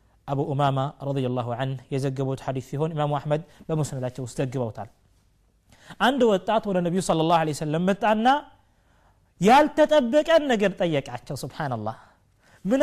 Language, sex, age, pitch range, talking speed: Amharic, male, 30-49, 135-220 Hz, 140 wpm